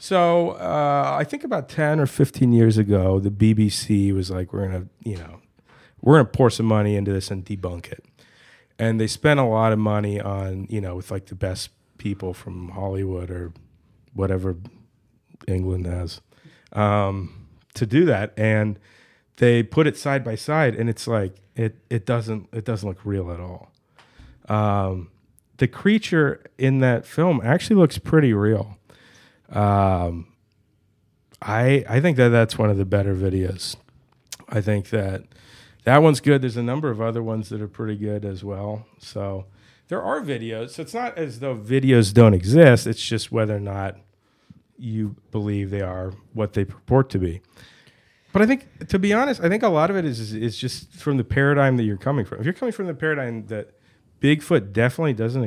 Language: English